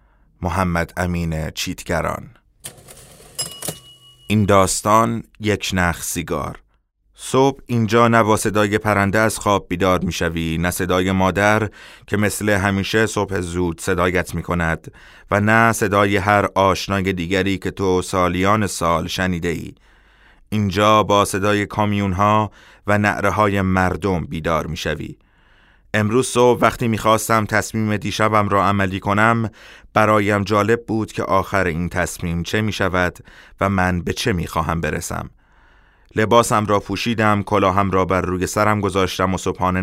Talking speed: 135 wpm